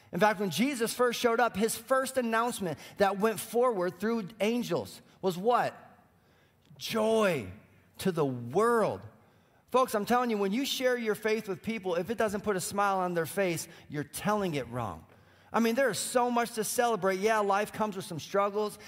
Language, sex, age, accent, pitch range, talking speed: English, male, 30-49, American, 165-220 Hz, 190 wpm